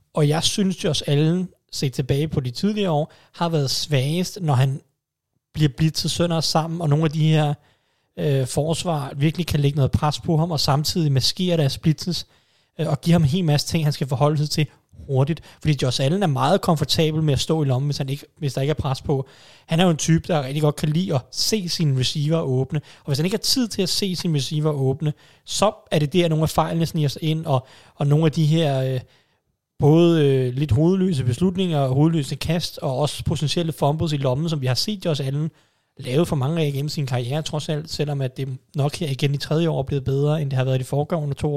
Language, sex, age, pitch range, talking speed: Danish, male, 30-49, 140-165 Hz, 240 wpm